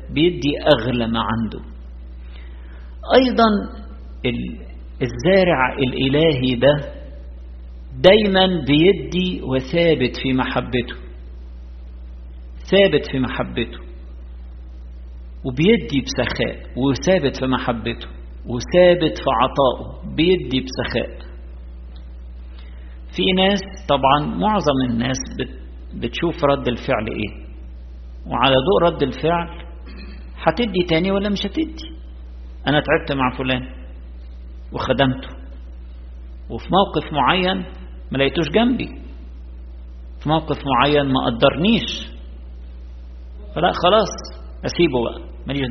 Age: 50-69